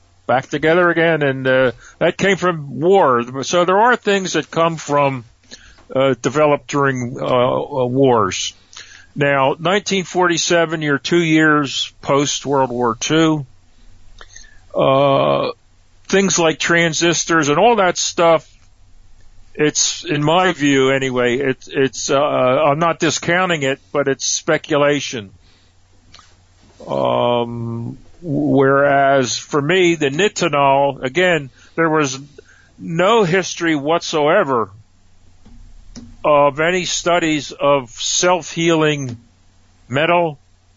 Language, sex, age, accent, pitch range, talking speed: English, male, 50-69, American, 115-160 Hz, 105 wpm